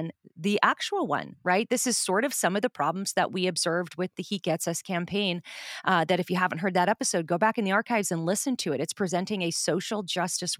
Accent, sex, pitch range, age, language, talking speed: American, female, 170-215 Hz, 30-49, English, 245 wpm